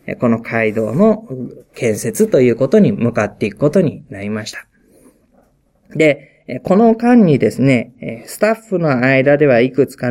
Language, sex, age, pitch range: Japanese, male, 20-39, 115-180 Hz